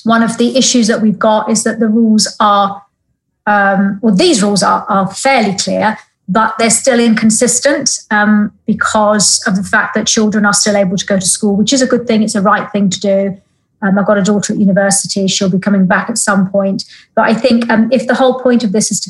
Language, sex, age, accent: English, female, 30-49, British